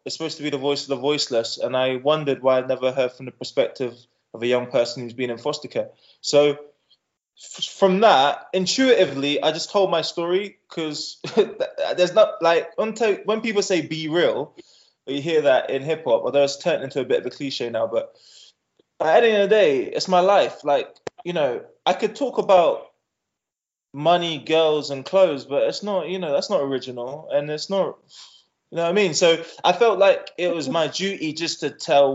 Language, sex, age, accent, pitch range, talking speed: English, male, 20-39, British, 140-195 Hz, 205 wpm